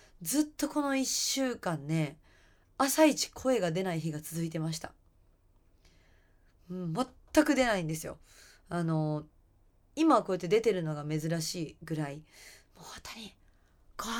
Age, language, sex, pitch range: 20-39, Japanese, female, 160-250 Hz